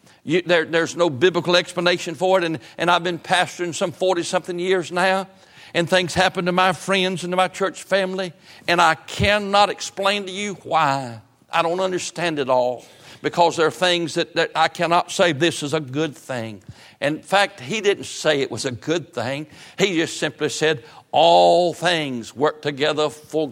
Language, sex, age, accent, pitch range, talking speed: English, male, 60-79, American, 150-185 Hz, 185 wpm